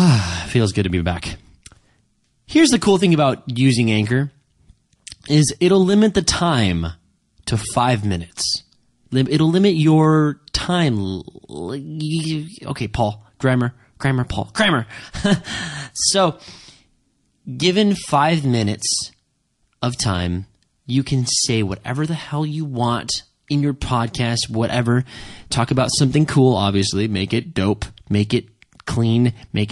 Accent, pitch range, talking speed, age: American, 110-170 Hz, 120 wpm, 20-39